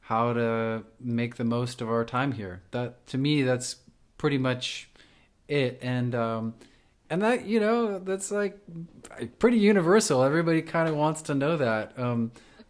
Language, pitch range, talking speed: English, 110-130 Hz, 160 wpm